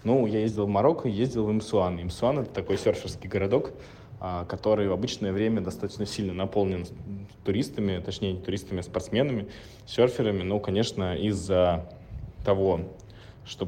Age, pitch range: 20-39, 100-115 Hz